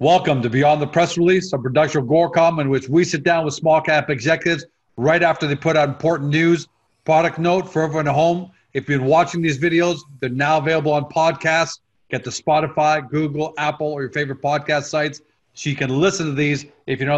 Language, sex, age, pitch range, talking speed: English, male, 40-59, 140-165 Hz, 215 wpm